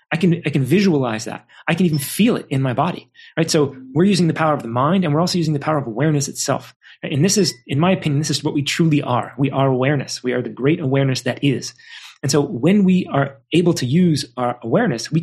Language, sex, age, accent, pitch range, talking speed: English, male, 30-49, American, 130-170 Hz, 260 wpm